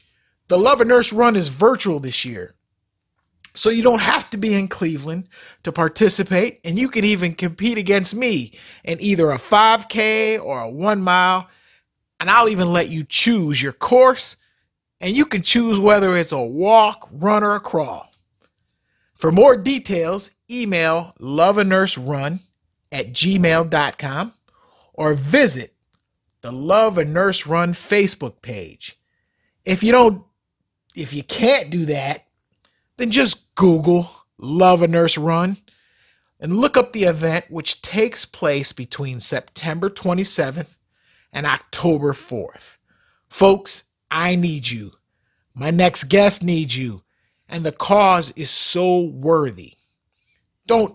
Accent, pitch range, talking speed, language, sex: American, 130-195 Hz, 135 wpm, English, male